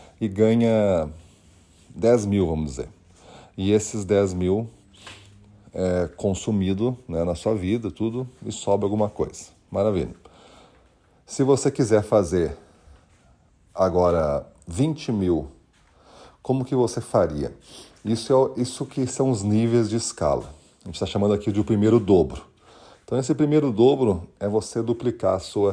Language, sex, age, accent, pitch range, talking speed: Portuguese, male, 40-59, Brazilian, 95-115 Hz, 140 wpm